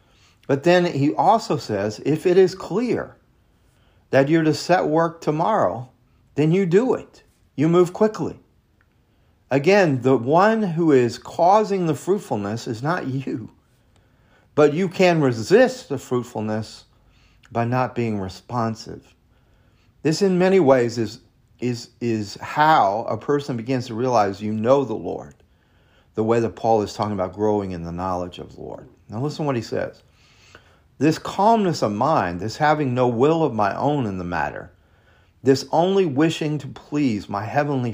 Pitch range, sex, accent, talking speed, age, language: 110-150 Hz, male, American, 160 wpm, 40-59, English